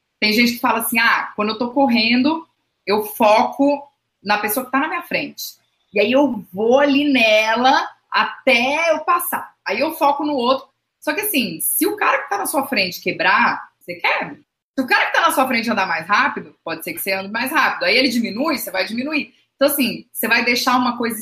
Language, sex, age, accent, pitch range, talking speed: Portuguese, female, 20-39, Brazilian, 200-265 Hz, 220 wpm